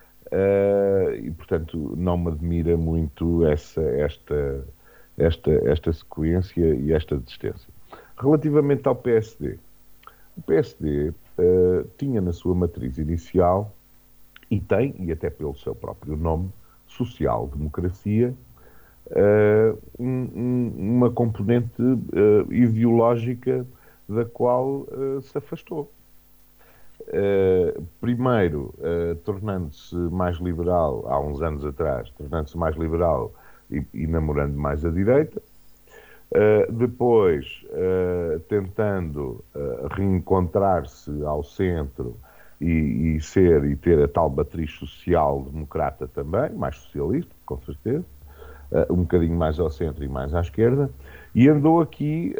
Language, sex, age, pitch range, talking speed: Portuguese, male, 50-69, 80-120 Hz, 105 wpm